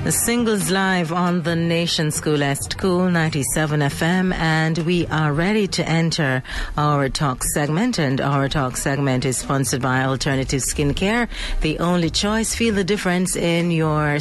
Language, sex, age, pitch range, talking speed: English, female, 40-59, 135-170 Hz, 150 wpm